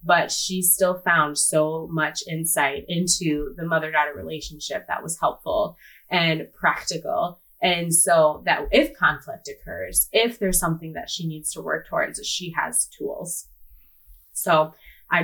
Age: 20-39